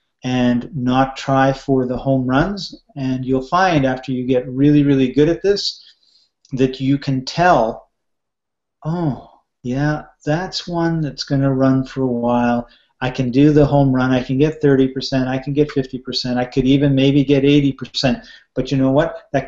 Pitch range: 125-140 Hz